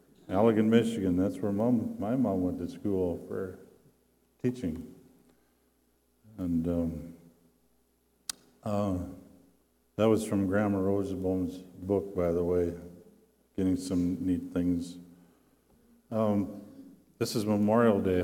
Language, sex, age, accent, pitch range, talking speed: English, male, 50-69, American, 90-105 Hz, 110 wpm